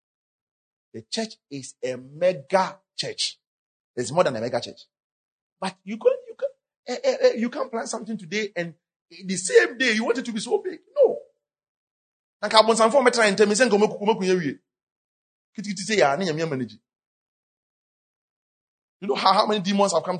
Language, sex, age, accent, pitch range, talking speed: English, male, 30-49, Nigerian, 175-235 Hz, 130 wpm